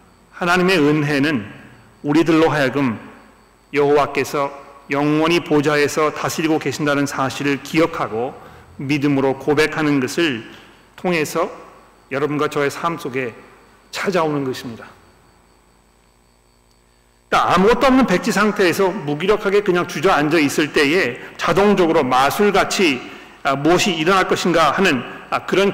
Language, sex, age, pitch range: Korean, male, 40-59, 135-170 Hz